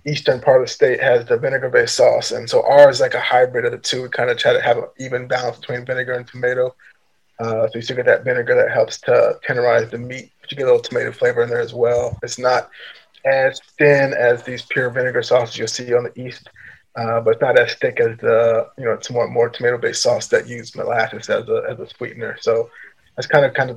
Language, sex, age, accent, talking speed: English, male, 20-39, American, 255 wpm